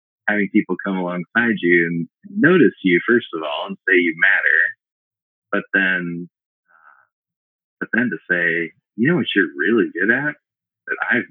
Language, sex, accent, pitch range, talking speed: English, male, American, 95-145 Hz, 165 wpm